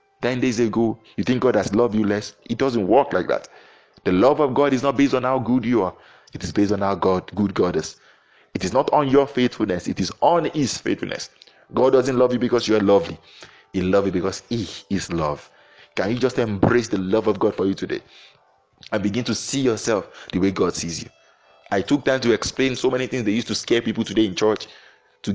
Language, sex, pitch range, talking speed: English, male, 100-130 Hz, 235 wpm